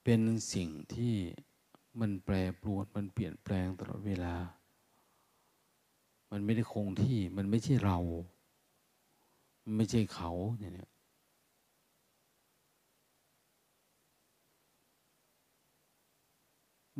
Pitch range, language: 95-120 Hz, Thai